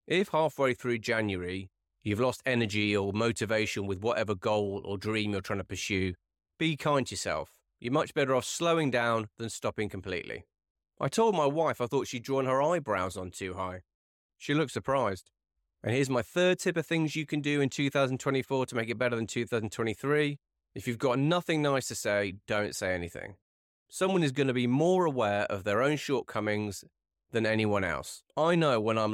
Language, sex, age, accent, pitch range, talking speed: English, male, 30-49, British, 100-140 Hz, 190 wpm